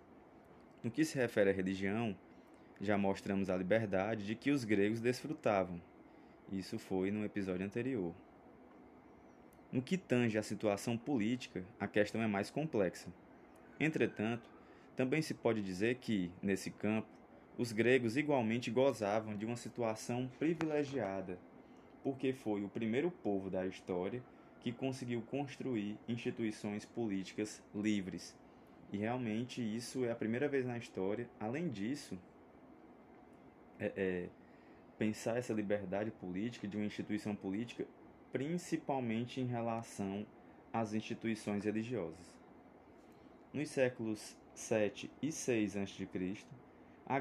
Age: 20-39